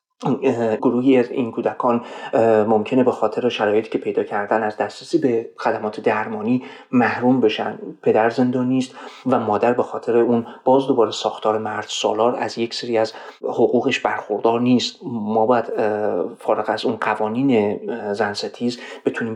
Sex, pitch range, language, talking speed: male, 110-135 Hz, Persian, 145 wpm